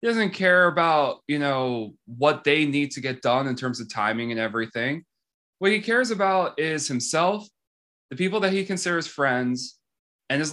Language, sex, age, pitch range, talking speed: English, male, 20-39, 125-170 Hz, 180 wpm